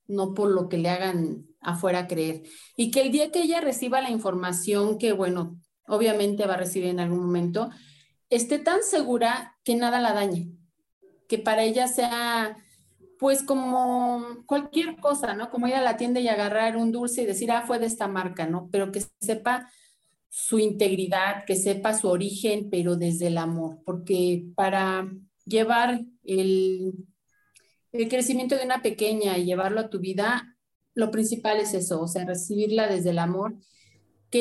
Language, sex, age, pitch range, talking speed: Spanish, female, 40-59, 185-235 Hz, 165 wpm